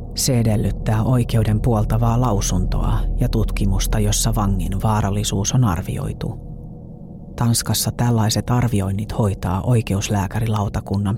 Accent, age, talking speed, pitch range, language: native, 40-59, 90 wpm, 100-120 Hz, Finnish